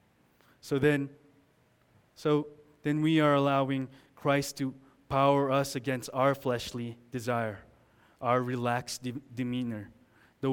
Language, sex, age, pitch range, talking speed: English, male, 20-39, 125-140 Hz, 115 wpm